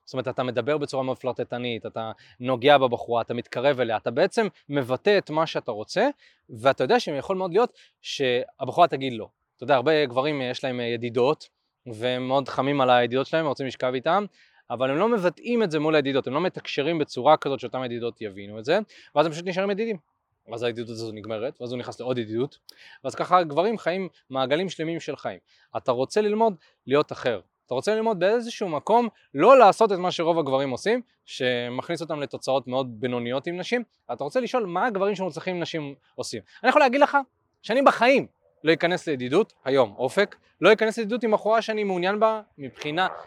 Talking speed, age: 185 wpm, 20-39